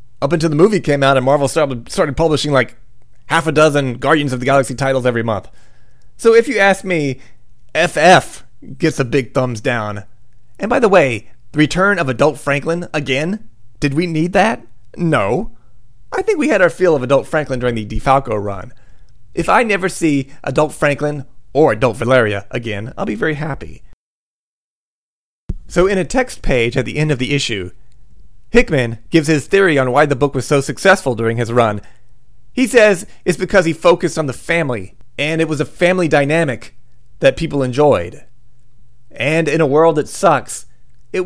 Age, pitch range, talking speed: 30-49, 120-165 Hz, 180 wpm